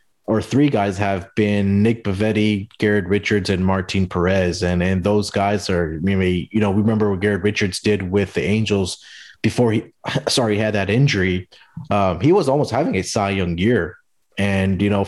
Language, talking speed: English, 190 wpm